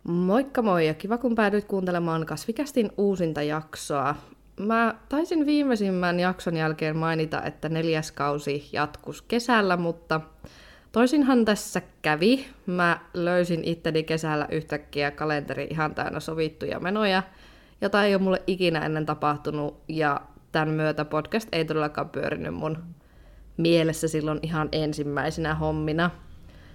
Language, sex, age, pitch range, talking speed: Finnish, female, 20-39, 150-185 Hz, 125 wpm